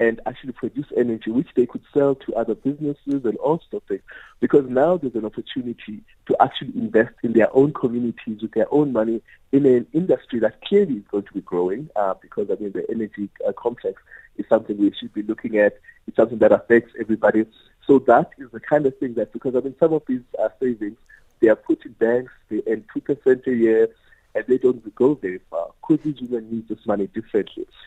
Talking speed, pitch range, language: 220 wpm, 110-145 Hz, English